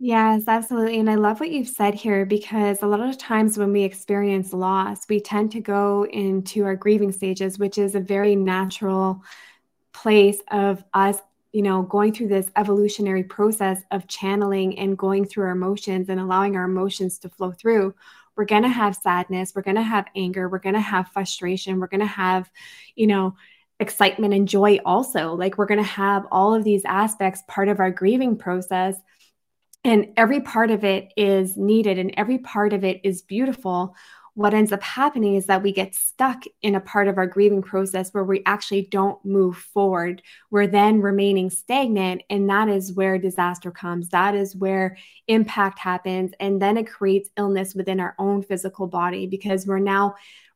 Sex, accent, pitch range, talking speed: female, American, 190-210 Hz, 190 wpm